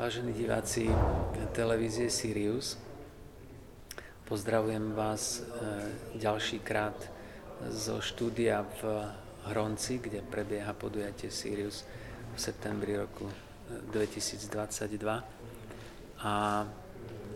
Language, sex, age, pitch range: Slovak, male, 40-59, 105-115 Hz